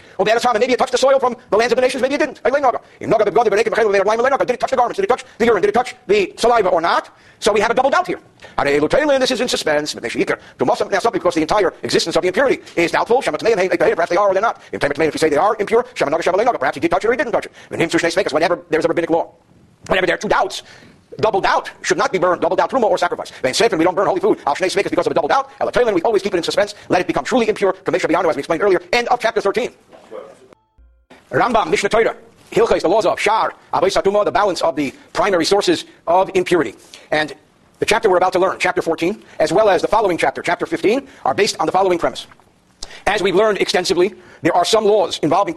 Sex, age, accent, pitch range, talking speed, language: male, 50-69, American, 175-260 Hz, 265 wpm, English